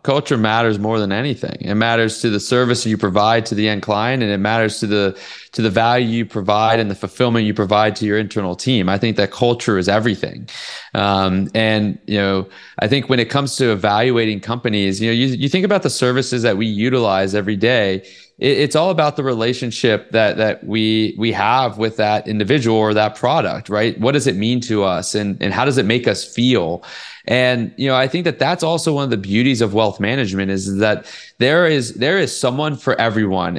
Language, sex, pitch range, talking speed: English, male, 105-135 Hz, 215 wpm